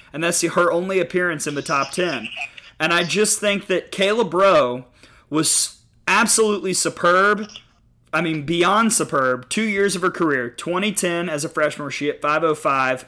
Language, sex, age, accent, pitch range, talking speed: English, male, 30-49, American, 135-175 Hz, 165 wpm